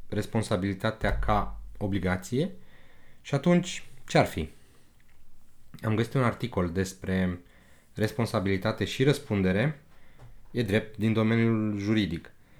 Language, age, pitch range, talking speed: Romanian, 30-49, 105-145 Hz, 100 wpm